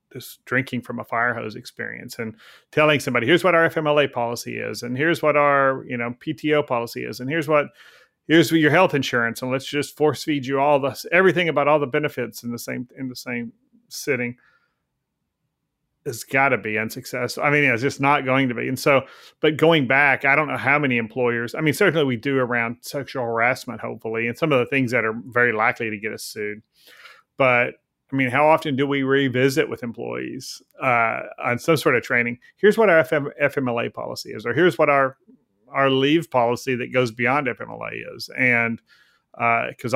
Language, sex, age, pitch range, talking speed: English, male, 30-49, 120-145 Hz, 200 wpm